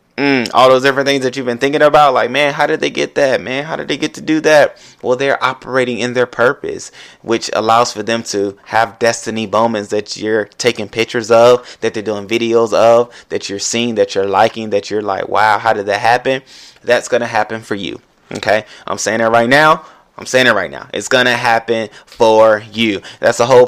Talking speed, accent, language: 225 wpm, American, English